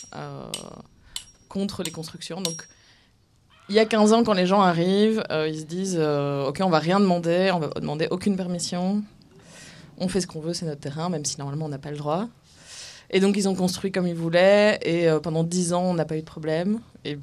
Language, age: French, 20-39